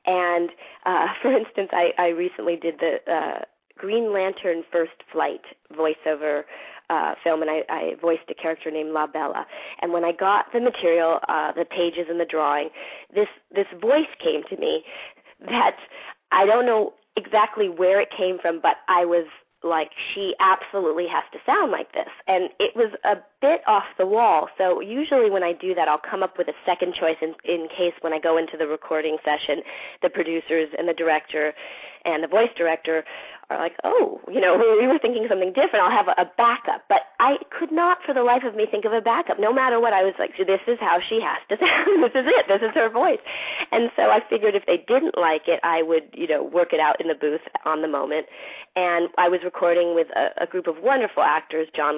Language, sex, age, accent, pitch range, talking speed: English, female, 30-49, American, 165-230 Hz, 215 wpm